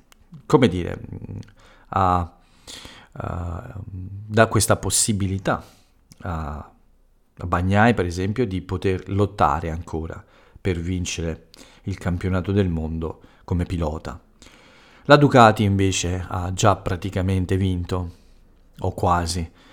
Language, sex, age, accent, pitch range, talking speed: Italian, male, 40-59, native, 85-100 Hz, 90 wpm